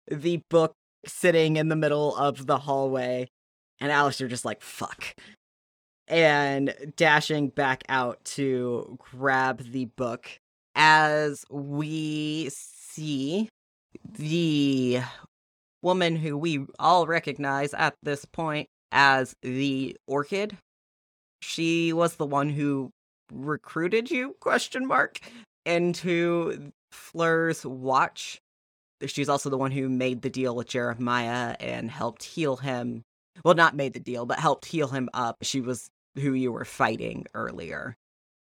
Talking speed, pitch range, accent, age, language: 125 wpm, 130-160 Hz, American, 20-39, English